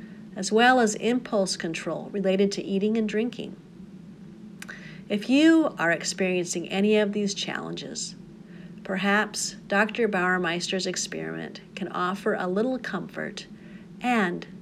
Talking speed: 115 wpm